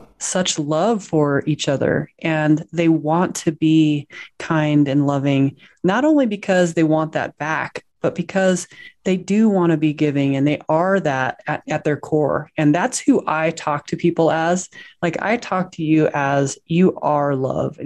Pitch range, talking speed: 145-180 Hz, 180 wpm